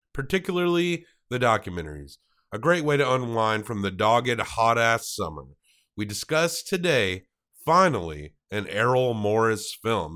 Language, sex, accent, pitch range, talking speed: English, male, American, 100-140 Hz, 125 wpm